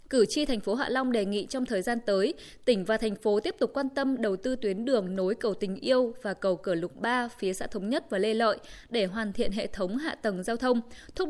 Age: 20-39